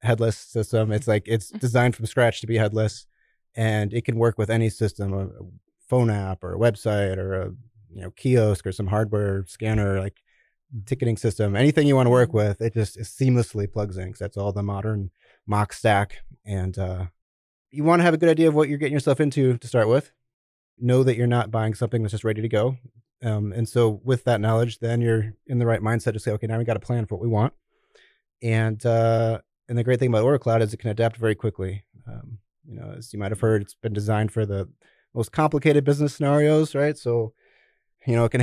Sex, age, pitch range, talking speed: male, 30-49, 105-120 Hz, 225 wpm